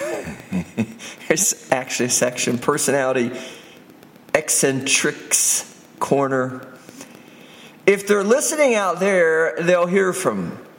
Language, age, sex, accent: English, 50-69, male, American